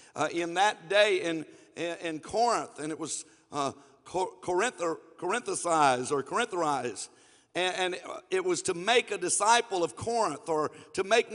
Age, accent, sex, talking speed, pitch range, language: 50-69, American, male, 160 wpm, 180-255 Hz, English